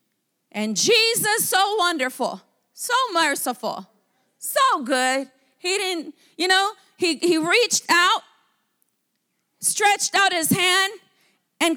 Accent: American